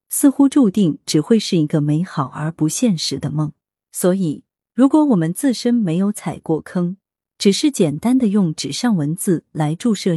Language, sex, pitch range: Chinese, female, 155-230 Hz